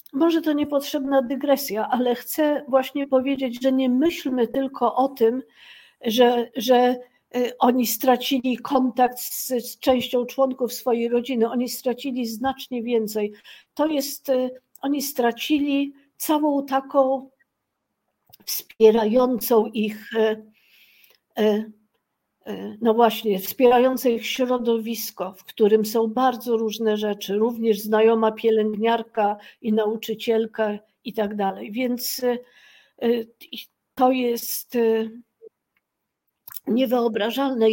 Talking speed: 95 wpm